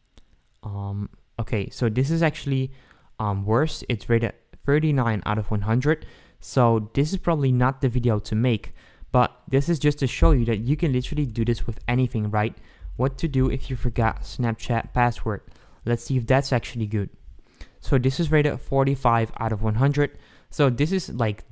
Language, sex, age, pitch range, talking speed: English, male, 20-39, 115-140 Hz, 180 wpm